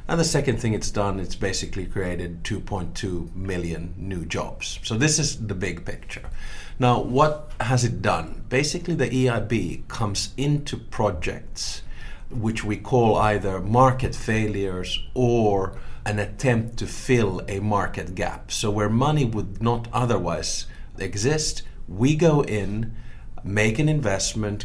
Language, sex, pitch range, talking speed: English, male, 95-120 Hz, 140 wpm